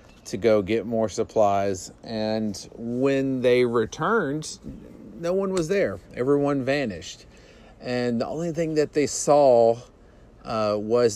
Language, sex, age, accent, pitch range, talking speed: English, male, 40-59, American, 110-140 Hz, 130 wpm